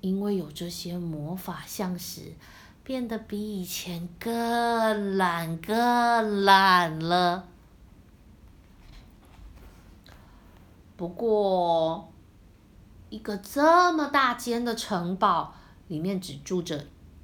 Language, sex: Chinese, female